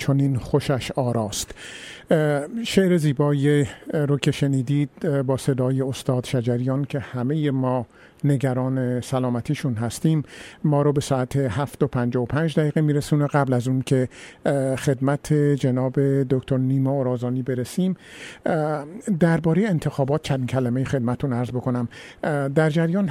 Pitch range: 130-155 Hz